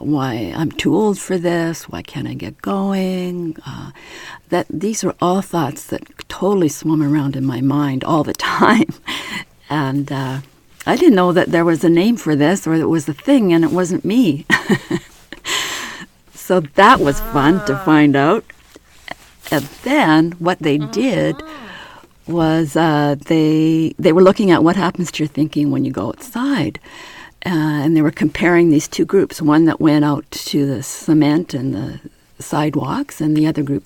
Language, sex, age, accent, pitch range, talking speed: English, female, 50-69, American, 140-170 Hz, 175 wpm